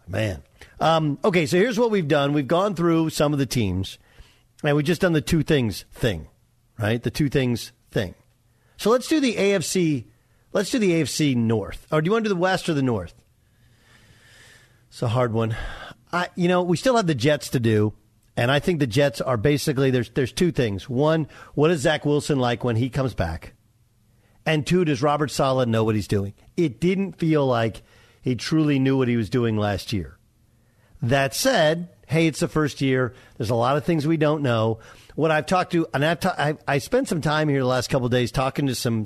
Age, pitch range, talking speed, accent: 50-69, 115-165 Hz, 220 wpm, American